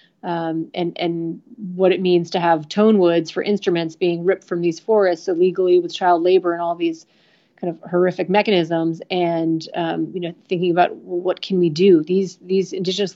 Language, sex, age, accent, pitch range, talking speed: English, female, 30-49, American, 170-190 Hz, 185 wpm